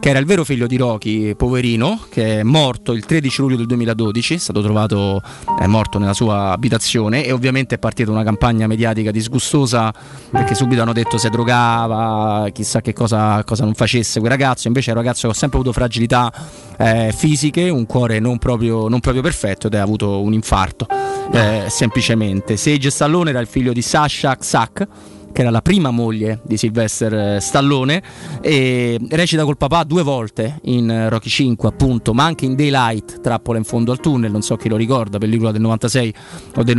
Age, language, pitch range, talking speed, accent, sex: 20-39, Italian, 110-135 Hz, 190 wpm, native, male